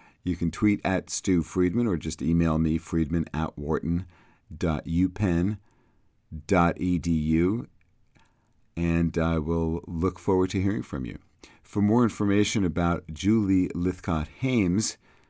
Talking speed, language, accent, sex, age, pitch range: 110 wpm, English, American, male, 50-69, 80-105 Hz